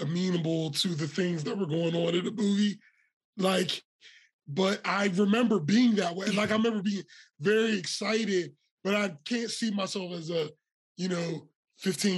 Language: English